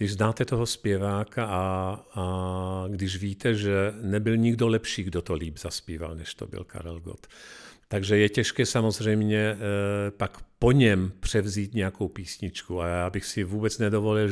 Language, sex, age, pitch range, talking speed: Czech, male, 50-69, 100-130 Hz, 155 wpm